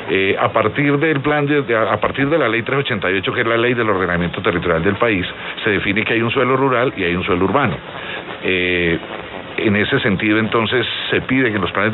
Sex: male